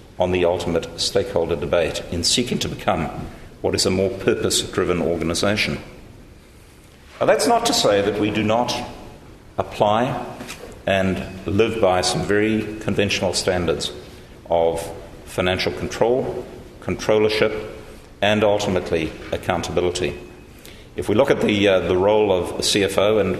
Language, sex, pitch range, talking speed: English, male, 85-105 Hz, 125 wpm